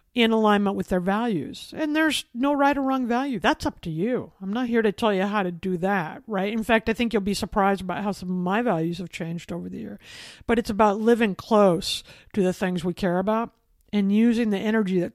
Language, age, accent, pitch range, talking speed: English, 50-69, American, 200-250 Hz, 240 wpm